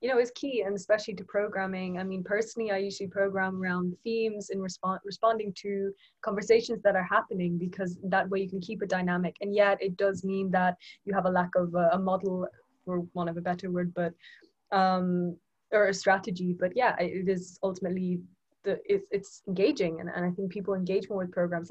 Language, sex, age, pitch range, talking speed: English, female, 20-39, 180-215 Hz, 205 wpm